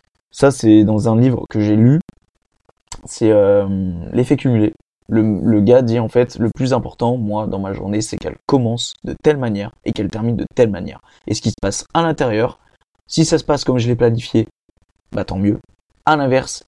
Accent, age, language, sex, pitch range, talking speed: French, 20-39, French, male, 105-125 Hz, 205 wpm